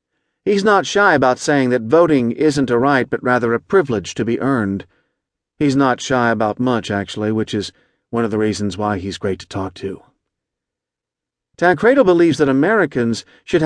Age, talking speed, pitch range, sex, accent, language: 40-59, 175 wpm, 110-155 Hz, male, American, English